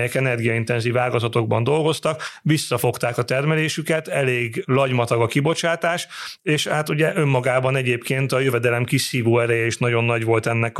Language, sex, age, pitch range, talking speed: Hungarian, male, 30-49, 120-150 Hz, 140 wpm